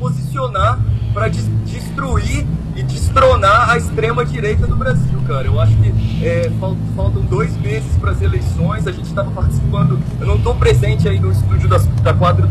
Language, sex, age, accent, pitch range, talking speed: English, male, 20-39, Brazilian, 105-125 Hz, 165 wpm